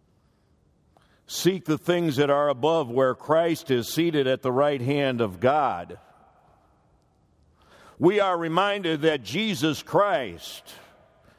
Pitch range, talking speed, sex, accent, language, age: 160-205 Hz, 115 wpm, male, American, English, 60-79